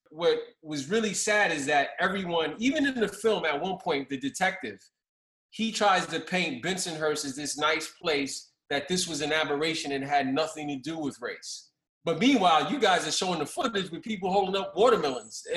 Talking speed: 195 wpm